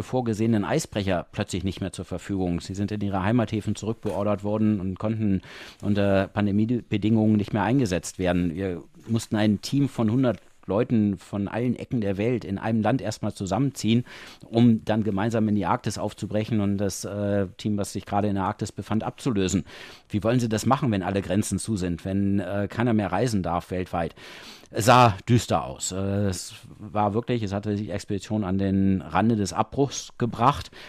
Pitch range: 95-115 Hz